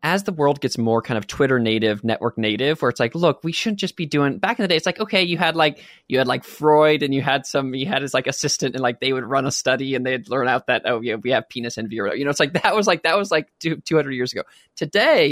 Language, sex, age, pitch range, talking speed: English, male, 20-39, 125-165 Hz, 300 wpm